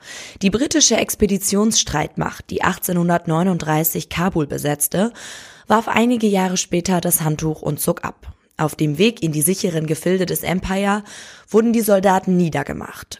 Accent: German